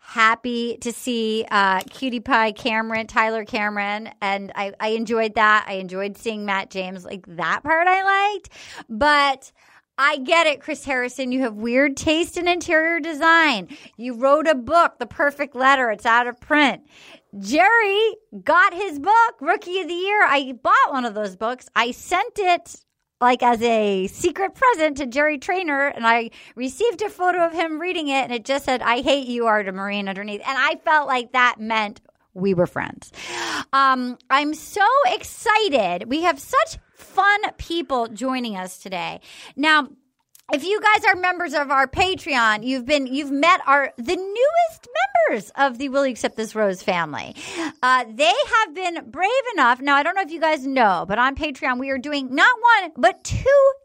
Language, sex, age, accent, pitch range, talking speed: English, female, 30-49, American, 230-340 Hz, 180 wpm